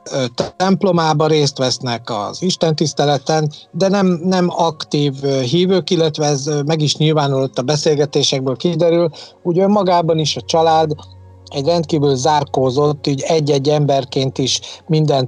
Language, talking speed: Hungarian, 120 wpm